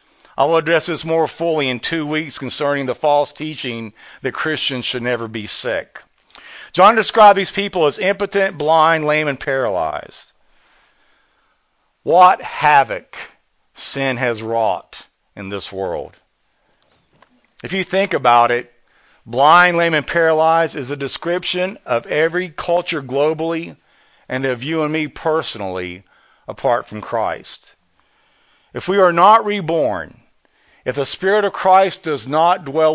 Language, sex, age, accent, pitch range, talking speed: English, male, 50-69, American, 135-180 Hz, 135 wpm